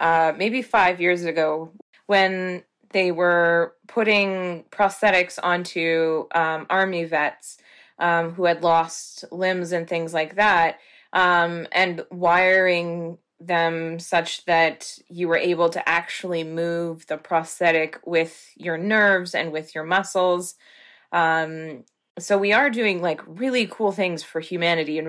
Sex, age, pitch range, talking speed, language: female, 20-39, 165-185 Hz, 135 wpm, English